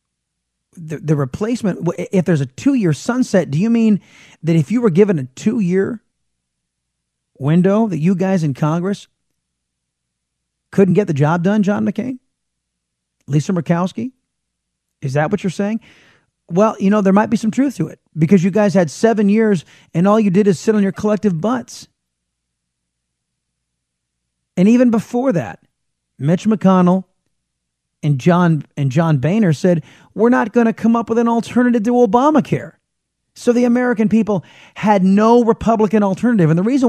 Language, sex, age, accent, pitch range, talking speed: English, male, 30-49, American, 135-220 Hz, 160 wpm